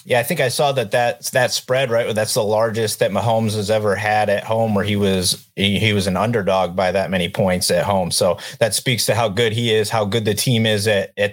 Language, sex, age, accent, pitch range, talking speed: English, male, 30-49, American, 110-130 Hz, 260 wpm